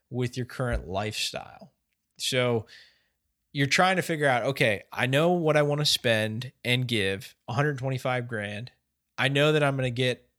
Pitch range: 105-130 Hz